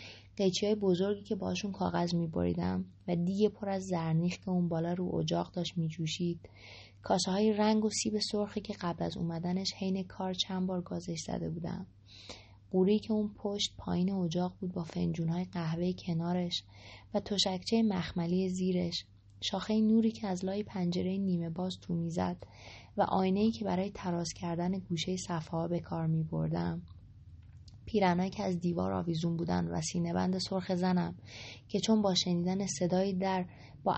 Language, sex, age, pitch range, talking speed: English, female, 20-39, 160-195 Hz, 160 wpm